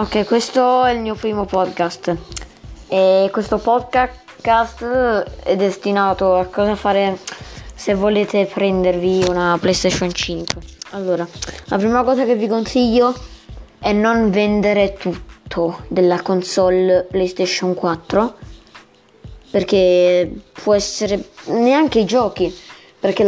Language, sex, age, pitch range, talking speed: Italian, female, 20-39, 185-220 Hz, 110 wpm